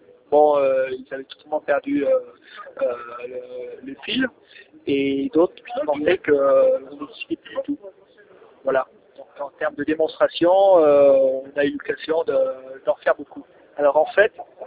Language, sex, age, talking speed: French, male, 30-49, 170 wpm